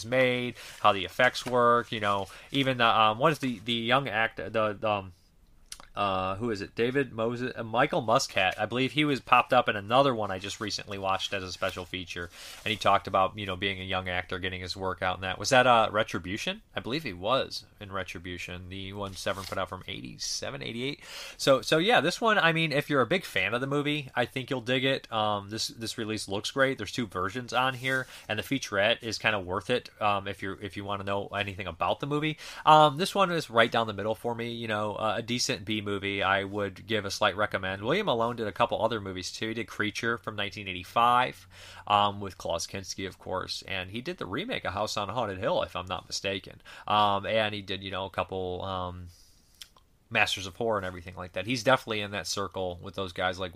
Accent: American